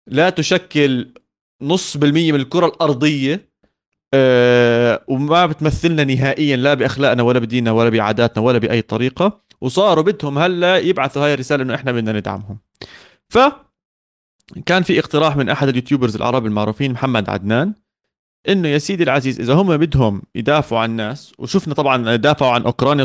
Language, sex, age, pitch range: Arabic, male, 30-49, 125-175 Hz